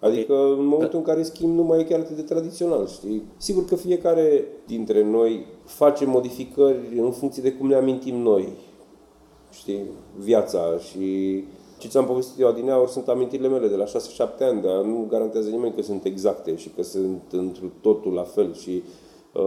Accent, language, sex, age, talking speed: native, Romanian, male, 30-49, 185 wpm